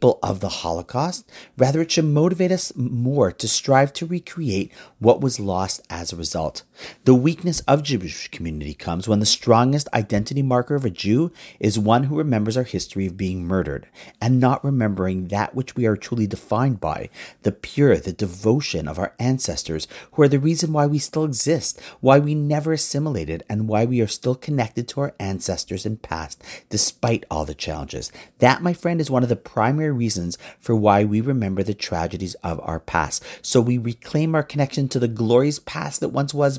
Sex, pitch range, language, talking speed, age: male, 95-135 Hz, English, 190 wpm, 40-59